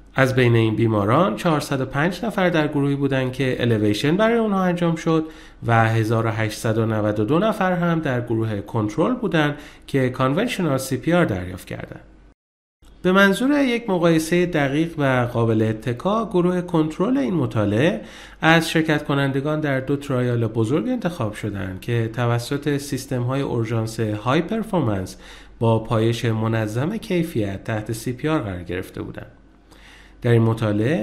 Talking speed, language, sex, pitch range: 135 wpm, Persian, male, 110-165 Hz